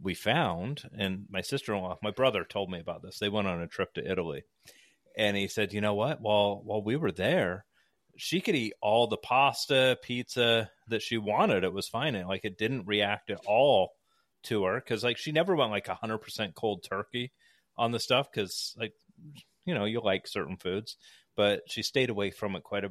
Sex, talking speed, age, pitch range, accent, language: male, 205 wpm, 30-49, 95-115 Hz, American, English